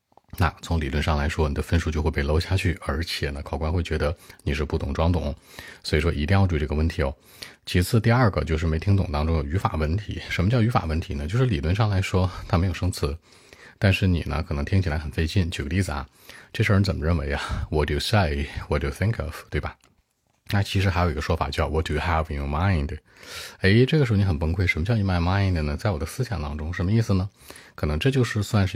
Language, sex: Chinese, male